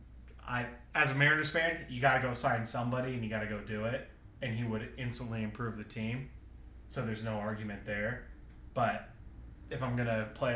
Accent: American